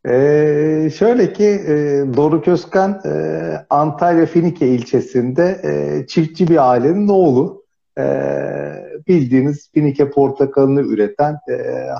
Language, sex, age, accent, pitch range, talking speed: Turkish, male, 50-69, native, 135-185 Hz, 105 wpm